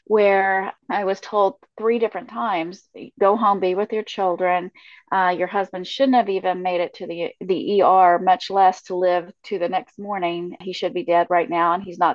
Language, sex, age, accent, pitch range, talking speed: English, female, 30-49, American, 180-220 Hz, 205 wpm